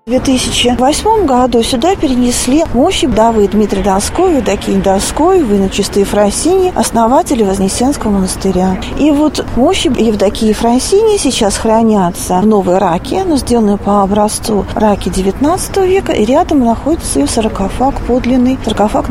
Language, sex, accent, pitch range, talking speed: Russian, female, native, 210-275 Hz, 125 wpm